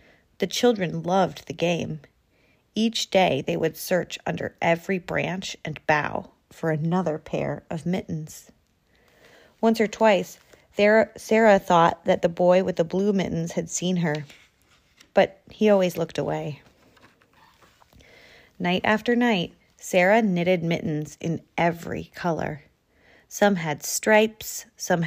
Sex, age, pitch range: female, 30-49, 170-210 Hz